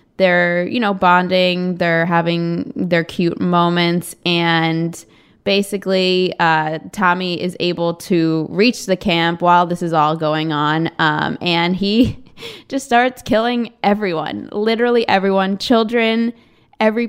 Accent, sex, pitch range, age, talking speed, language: American, female, 175-205 Hz, 20-39, 125 wpm, English